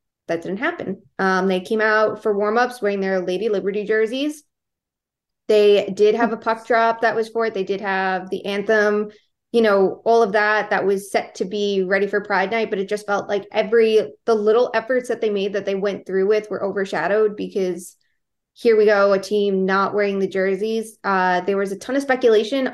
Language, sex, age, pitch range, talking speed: English, female, 20-39, 190-220 Hz, 210 wpm